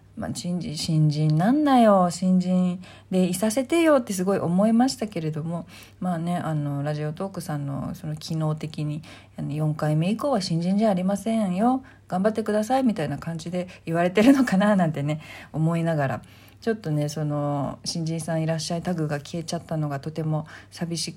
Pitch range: 150-205 Hz